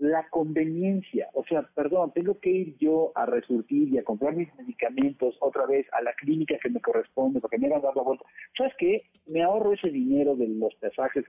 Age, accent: 50-69, Mexican